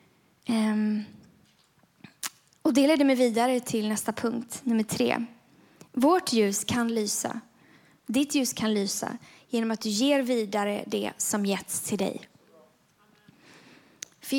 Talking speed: 120 wpm